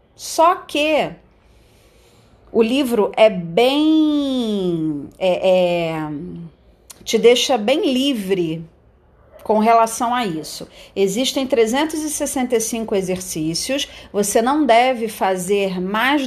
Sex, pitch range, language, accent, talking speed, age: female, 195-265 Hz, Portuguese, Brazilian, 90 wpm, 40-59